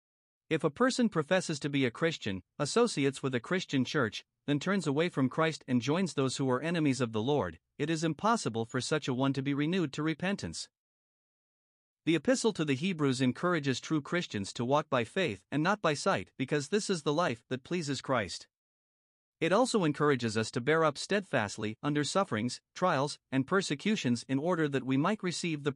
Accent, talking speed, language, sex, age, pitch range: American, 195 wpm, English, male, 50-69, 130-175 Hz